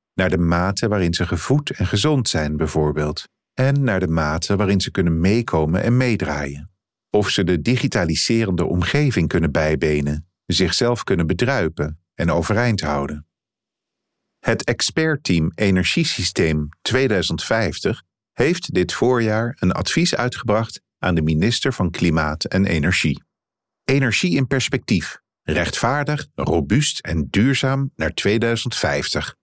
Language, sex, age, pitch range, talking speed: Dutch, male, 50-69, 80-120 Hz, 120 wpm